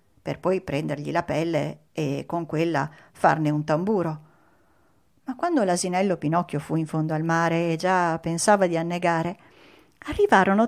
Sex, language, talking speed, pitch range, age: female, Italian, 145 wpm, 165-270 Hz, 40-59